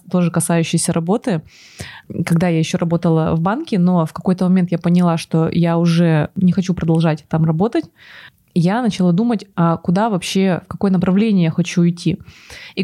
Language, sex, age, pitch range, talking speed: Russian, female, 20-39, 170-210 Hz, 165 wpm